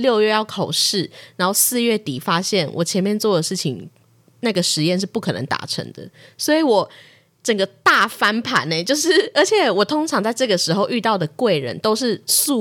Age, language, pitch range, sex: 20-39, Chinese, 170-230 Hz, female